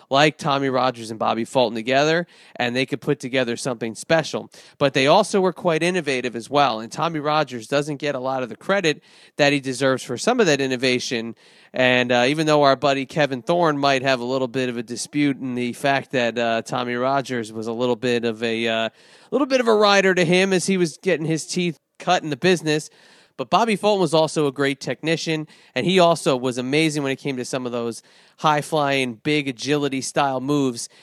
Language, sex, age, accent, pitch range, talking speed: English, male, 30-49, American, 130-160 Hz, 215 wpm